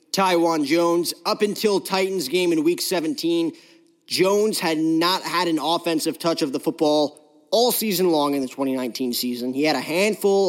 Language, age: English, 30-49